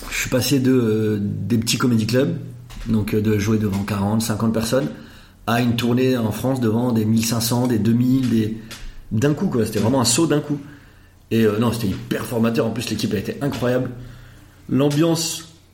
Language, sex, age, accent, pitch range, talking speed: French, male, 30-49, French, 110-130 Hz, 190 wpm